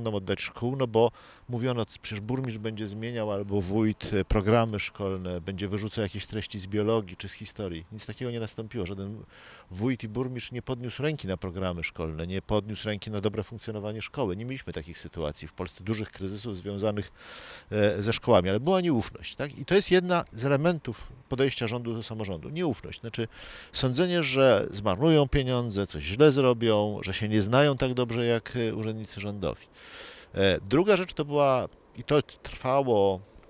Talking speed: 165 wpm